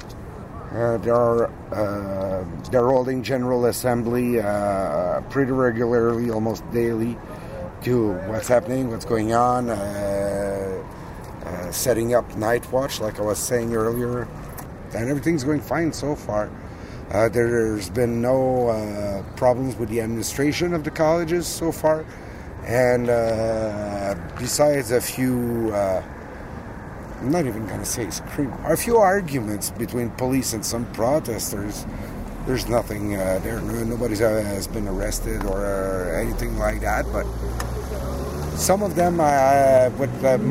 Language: English